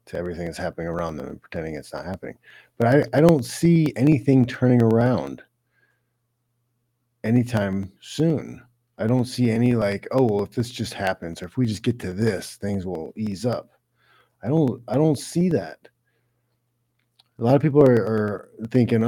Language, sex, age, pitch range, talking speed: English, male, 40-59, 100-125 Hz, 175 wpm